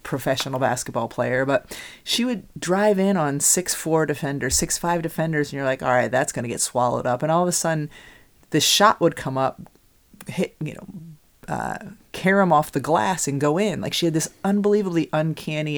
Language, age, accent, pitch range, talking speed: English, 30-49, American, 135-160 Hz, 200 wpm